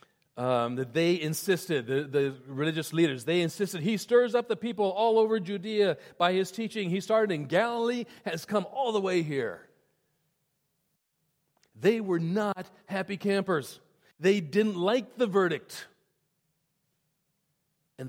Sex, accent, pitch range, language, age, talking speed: male, American, 150-200 Hz, English, 40-59, 135 wpm